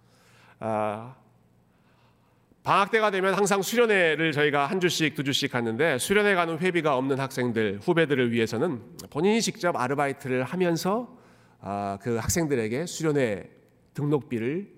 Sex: male